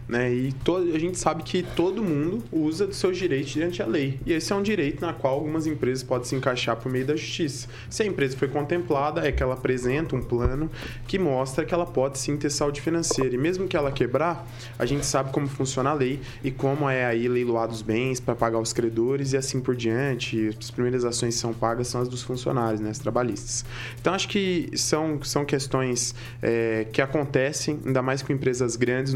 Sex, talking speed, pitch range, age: male, 215 wpm, 125-150 Hz, 20-39